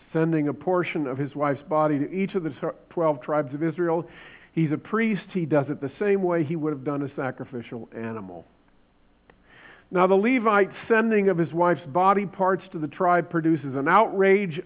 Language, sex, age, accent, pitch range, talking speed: English, male, 50-69, American, 155-195 Hz, 190 wpm